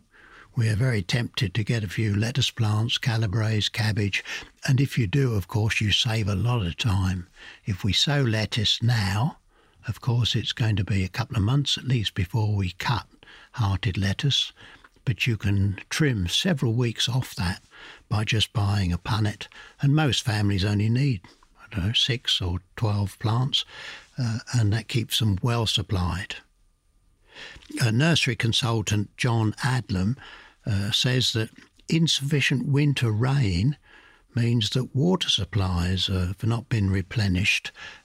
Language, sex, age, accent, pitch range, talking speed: English, male, 60-79, British, 100-130 Hz, 155 wpm